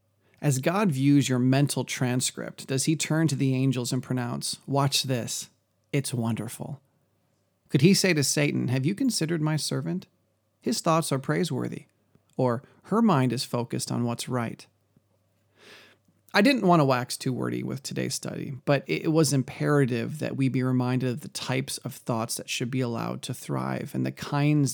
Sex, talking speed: male, 175 wpm